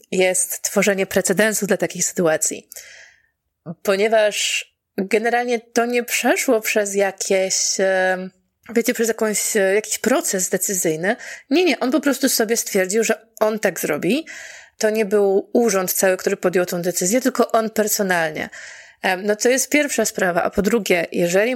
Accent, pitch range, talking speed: native, 195-235 Hz, 140 wpm